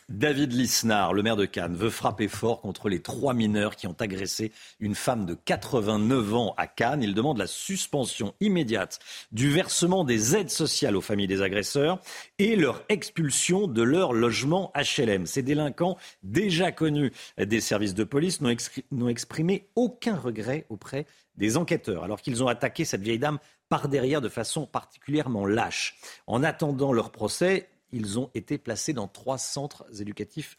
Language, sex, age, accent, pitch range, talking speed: French, male, 50-69, French, 105-150 Hz, 165 wpm